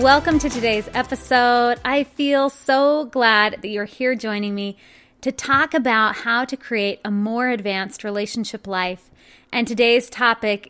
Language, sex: English, female